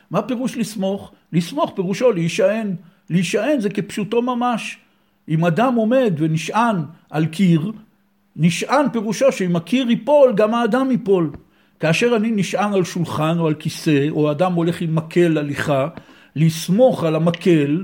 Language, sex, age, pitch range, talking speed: Hebrew, male, 60-79, 160-220 Hz, 140 wpm